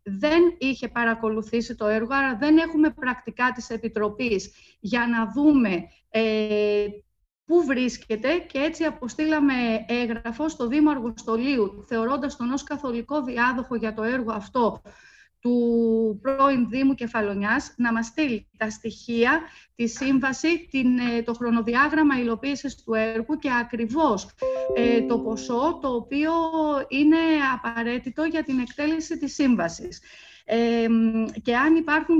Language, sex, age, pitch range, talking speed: Greek, female, 30-49, 230-280 Hz, 125 wpm